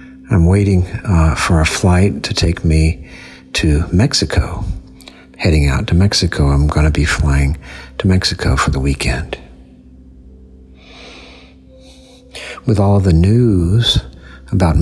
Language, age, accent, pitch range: English, 60-79, American, 65-100 Hz